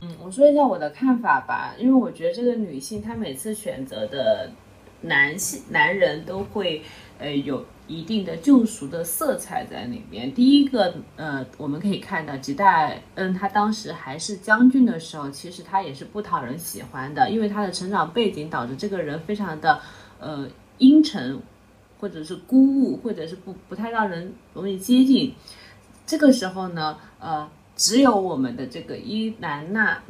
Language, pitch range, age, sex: Chinese, 170-245 Hz, 30-49, female